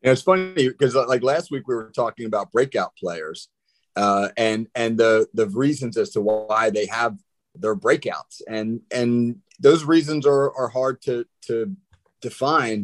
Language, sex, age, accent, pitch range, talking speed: English, male, 30-49, American, 110-130 Hz, 175 wpm